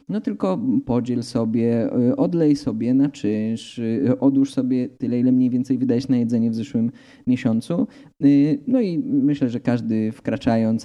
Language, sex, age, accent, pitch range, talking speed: Polish, male, 20-39, native, 125-155 Hz, 145 wpm